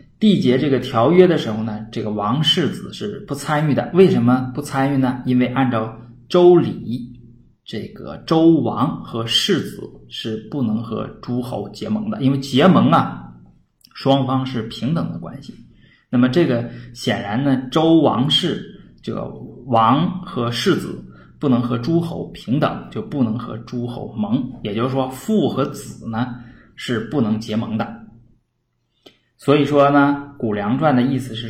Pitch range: 110-140 Hz